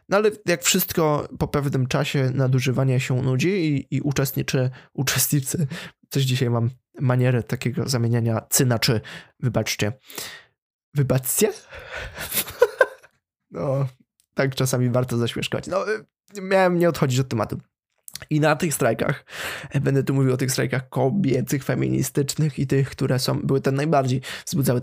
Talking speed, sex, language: 135 wpm, male, Polish